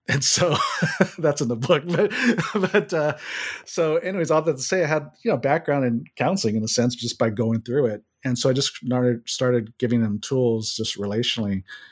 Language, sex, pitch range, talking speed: English, male, 115-145 Hz, 200 wpm